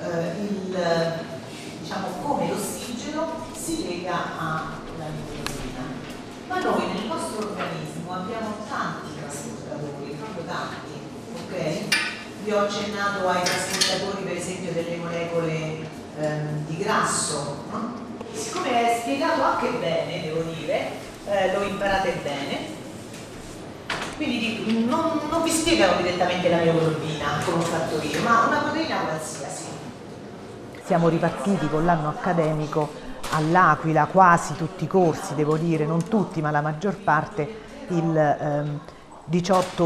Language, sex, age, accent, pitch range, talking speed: Italian, female, 40-59, native, 155-195 Hz, 115 wpm